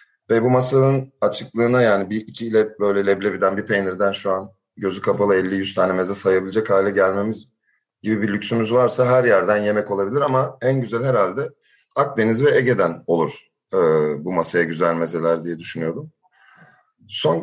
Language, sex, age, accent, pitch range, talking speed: Turkish, male, 30-49, native, 90-130 Hz, 155 wpm